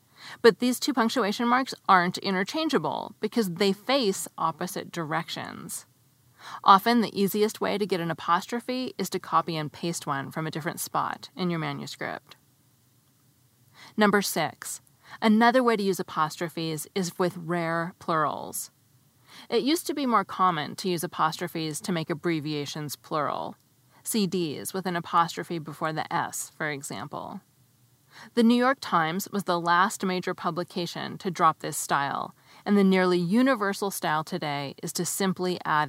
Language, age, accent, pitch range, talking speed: English, 30-49, American, 155-200 Hz, 145 wpm